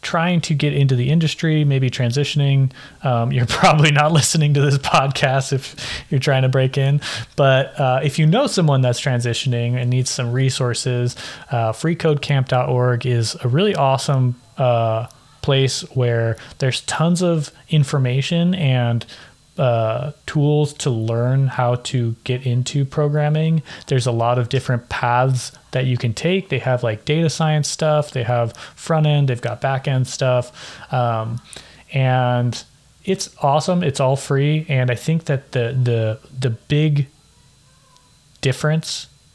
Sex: male